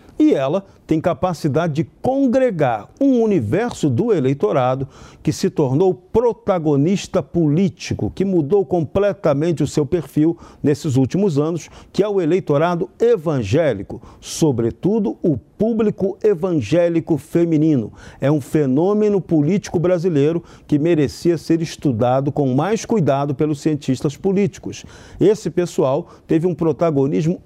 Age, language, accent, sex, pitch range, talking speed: 50-69, Portuguese, Brazilian, male, 140-185 Hz, 120 wpm